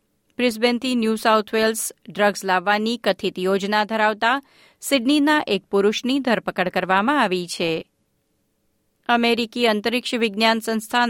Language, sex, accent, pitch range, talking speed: Gujarati, female, native, 200-255 Hz, 105 wpm